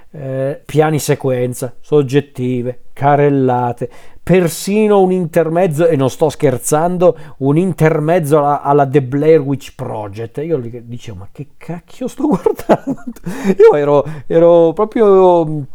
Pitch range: 145-190 Hz